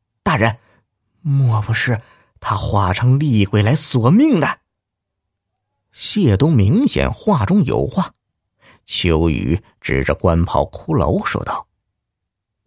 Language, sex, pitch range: Chinese, male, 85-110 Hz